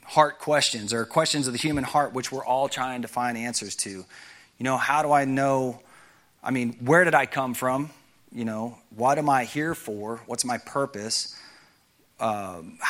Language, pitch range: English, 115-140 Hz